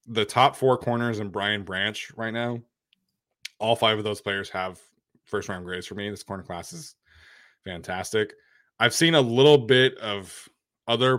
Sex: male